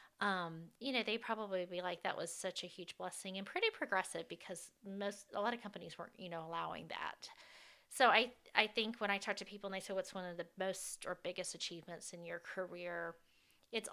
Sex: female